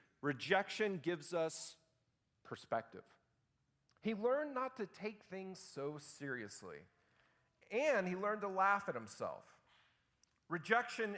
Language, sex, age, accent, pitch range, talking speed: English, male, 40-59, American, 135-195 Hz, 105 wpm